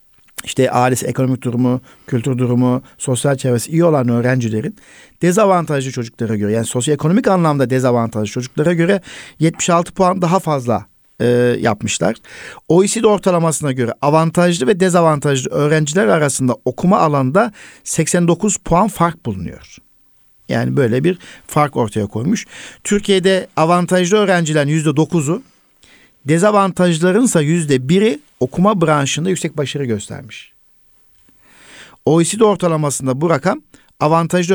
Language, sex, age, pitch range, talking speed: Turkish, male, 50-69, 130-175 Hz, 110 wpm